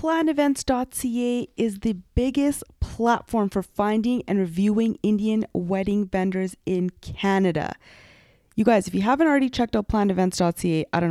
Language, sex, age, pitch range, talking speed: English, female, 20-39, 185-230 Hz, 135 wpm